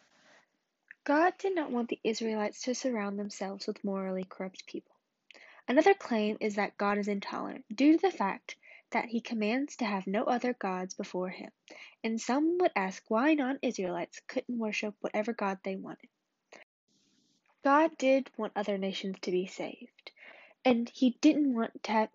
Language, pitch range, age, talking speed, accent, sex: English, 210-290 Hz, 10-29, 165 wpm, American, female